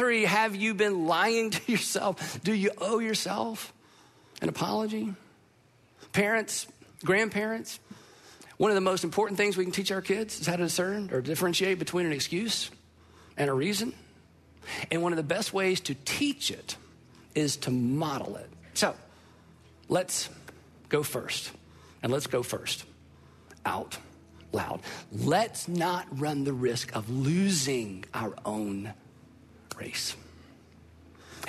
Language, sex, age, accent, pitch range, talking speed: English, male, 40-59, American, 130-195 Hz, 135 wpm